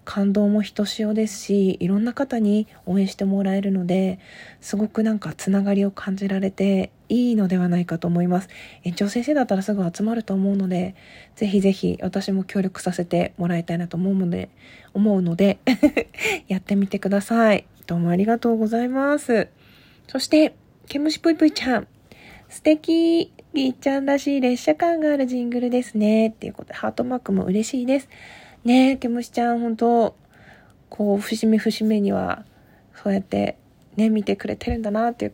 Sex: female